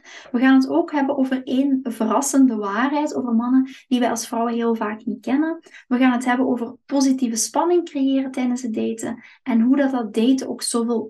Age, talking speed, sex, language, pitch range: 20-39, 200 wpm, female, Dutch, 230-275 Hz